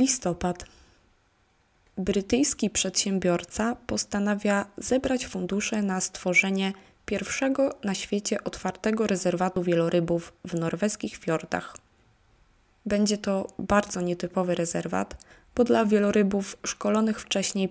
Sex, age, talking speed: female, 20-39, 90 wpm